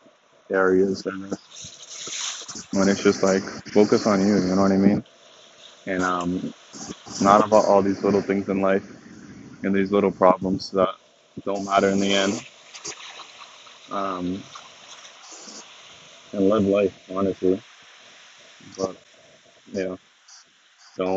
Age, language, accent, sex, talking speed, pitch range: 20-39, English, American, male, 120 wpm, 95-105 Hz